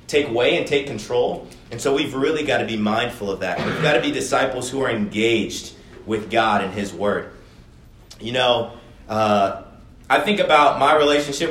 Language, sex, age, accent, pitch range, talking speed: English, male, 30-49, American, 115-155 Hz, 190 wpm